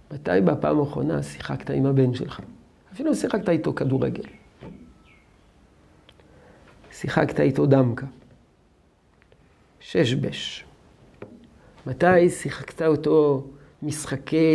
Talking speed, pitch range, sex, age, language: 85 wpm, 135-190 Hz, male, 50-69, Hebrew